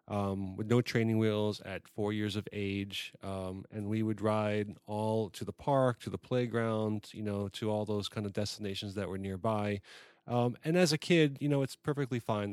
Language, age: English, 30-49